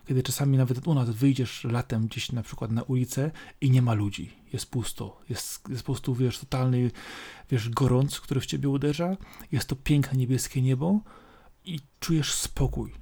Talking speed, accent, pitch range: 175 wpm, native, 120-150 Hz